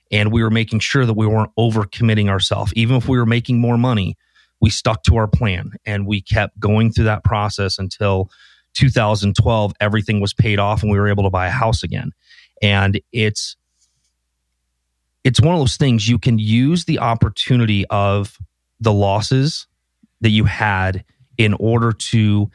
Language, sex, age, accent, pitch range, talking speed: English, male, 30-49, American, 100-115 Hz, 175 wpm